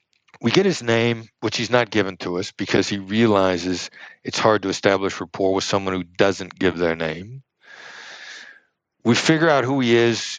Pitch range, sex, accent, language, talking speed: 95-125 Hz, male, American, English, 180 wpm